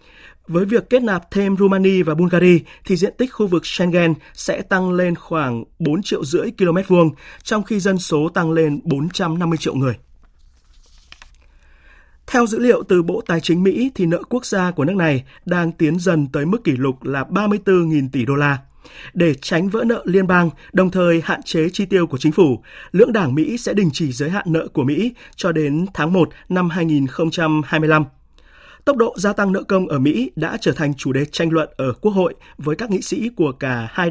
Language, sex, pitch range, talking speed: Vietnamese, male, 150-190 Hz, 200 wpm